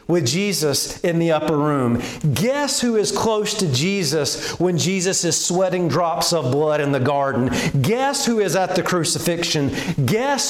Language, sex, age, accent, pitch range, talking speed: English, male, 40-59, American, 135-200 Hz, 165 wpm